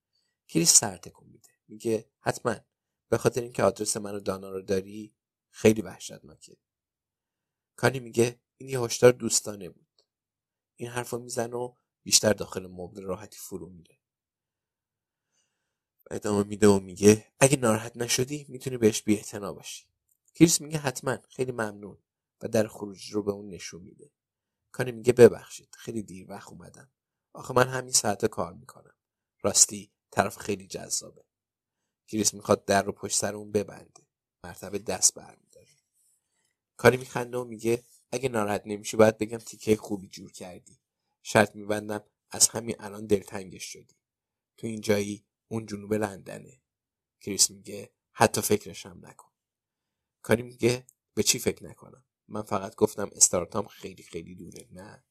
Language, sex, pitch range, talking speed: Persian, male, 100-120 Hz, 135 wpm